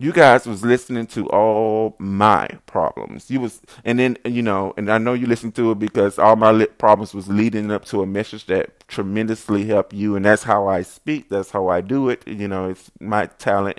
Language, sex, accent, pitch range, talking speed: English, male, American, 110-155 Hz, 220 wpm